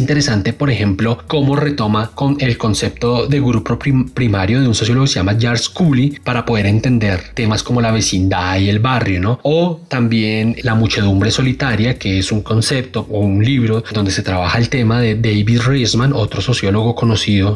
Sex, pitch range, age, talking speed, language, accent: male, 105-130 Hz, 30-49, 180 wpm, Spanish, Colombian